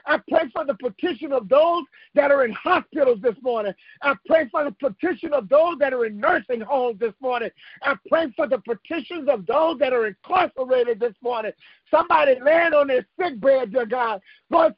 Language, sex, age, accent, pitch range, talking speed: English, male, 50-69, American, 270-340 Hz, 195 wpm